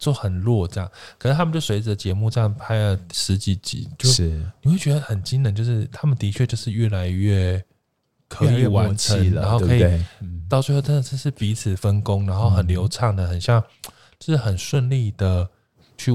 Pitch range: 95-120 Hz